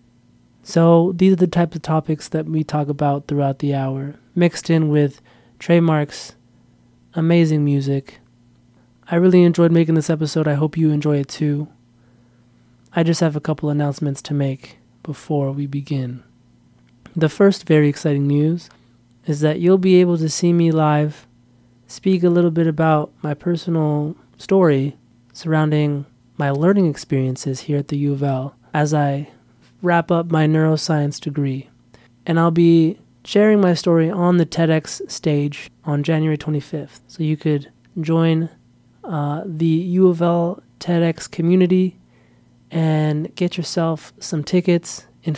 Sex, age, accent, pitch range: male, 20-39, American, 140-170 Hz